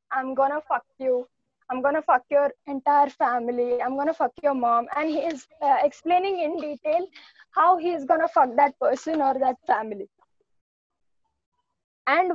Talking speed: 160 wpm